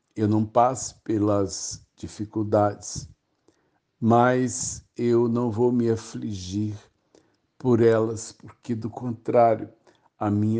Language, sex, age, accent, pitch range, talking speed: Portuguese, male, 60-79, Brazilian, 110-125 Hz, 100 wpm